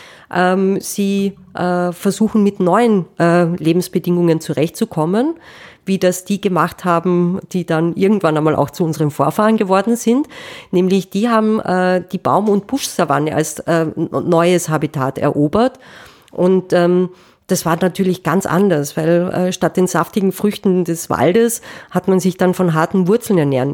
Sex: female